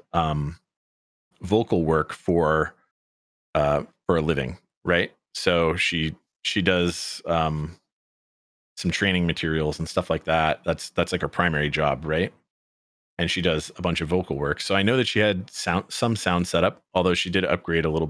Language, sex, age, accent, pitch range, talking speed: English, male, 30-49, American, 80-95 Hz, 170 wpm